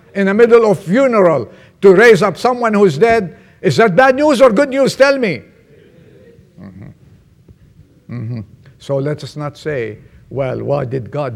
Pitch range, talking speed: 140-210 Hz, 170 wpm